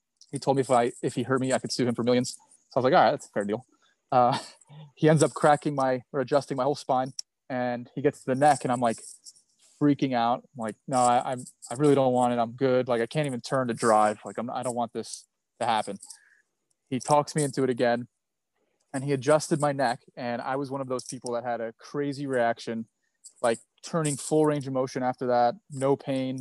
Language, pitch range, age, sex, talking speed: English, 120-140 Hz, 20-39, male, 245 wpm